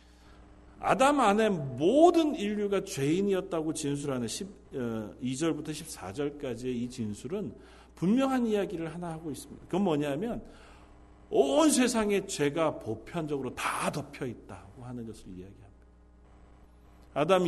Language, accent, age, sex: Korean, native, 50-69, male